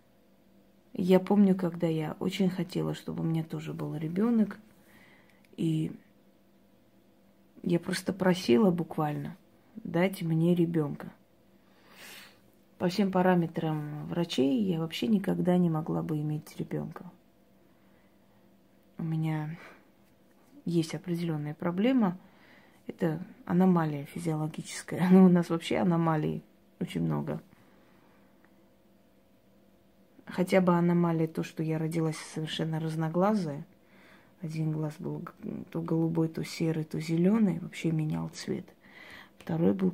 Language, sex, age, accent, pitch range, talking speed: Russian, female, 20-39, native, 160-185 Hz, 105 wpm